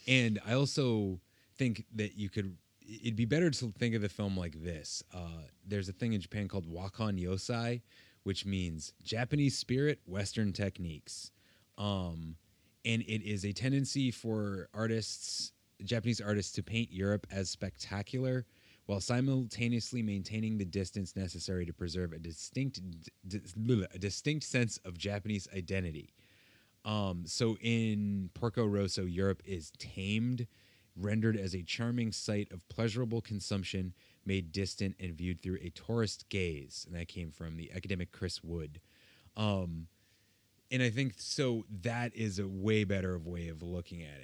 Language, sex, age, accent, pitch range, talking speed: English, male, 30-49, American, 90-110 Hz, 150 wpm